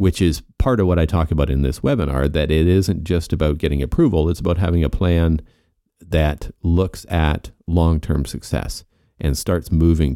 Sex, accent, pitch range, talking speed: male, American, 75-90 Hz, 185 wpm